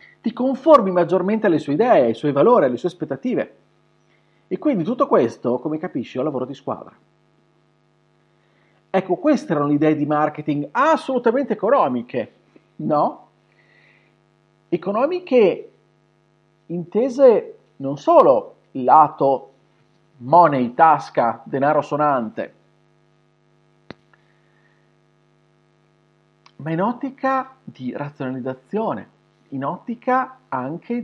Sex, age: male, 40-59